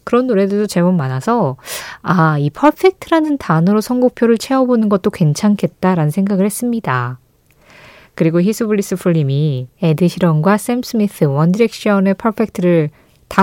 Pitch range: 160-245 Hz